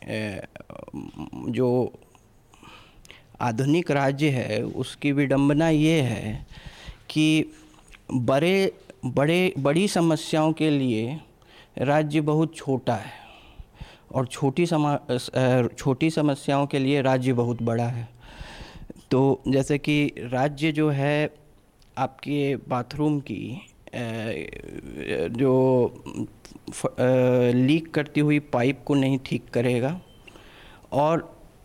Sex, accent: male, native